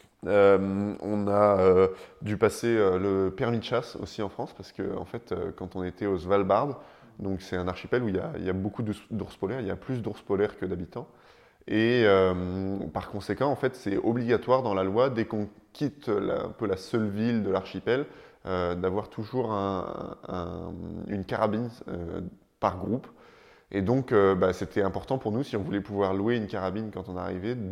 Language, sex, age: French, male, 20-39